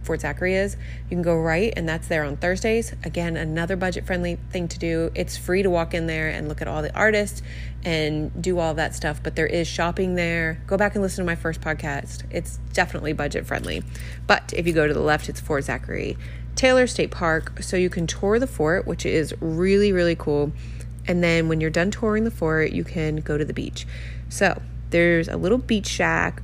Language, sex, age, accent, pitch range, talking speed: English, female, 30-49, American, 150-185 Hz, 220 wpm